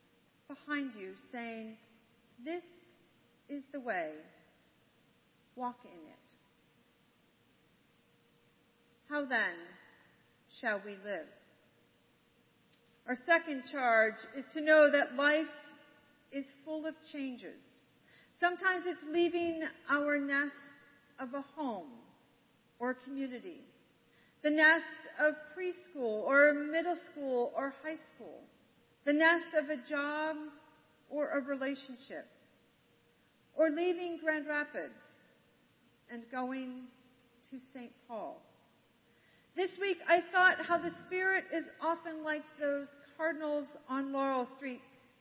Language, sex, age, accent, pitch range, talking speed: English, female, 40-59, American, 260-315 Hz, 105 wpm